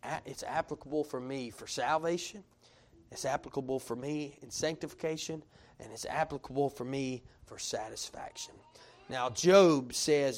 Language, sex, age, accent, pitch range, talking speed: English, male, 30-49, American, 125-170 Hz, 125 wpm